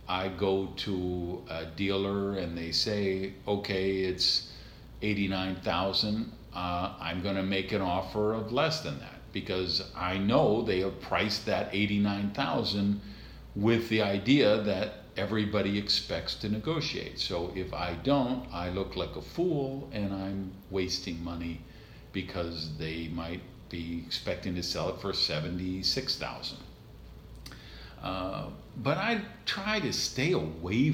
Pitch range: 85-105 Hz